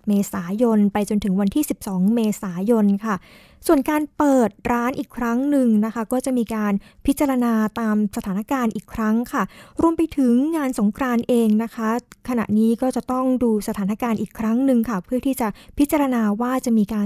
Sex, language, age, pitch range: female, Thai, 20-39, 210-255 Hz